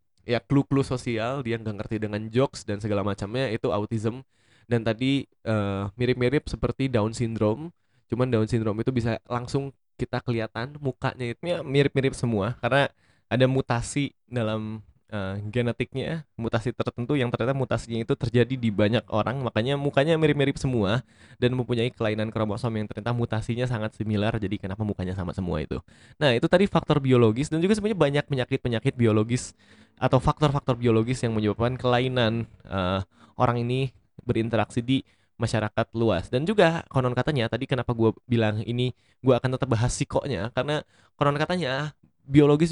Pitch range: 110-135 Hz